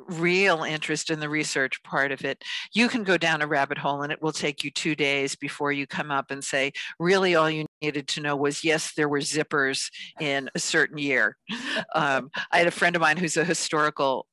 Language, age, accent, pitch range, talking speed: English, 50-69, American, 145-185 Hz, 220 wpm